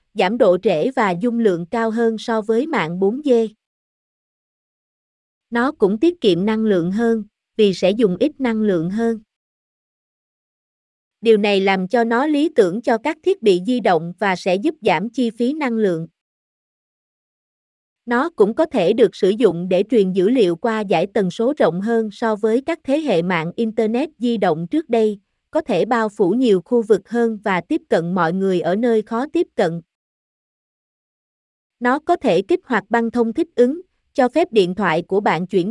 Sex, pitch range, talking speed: female, 195-245 Hz, 185 wpm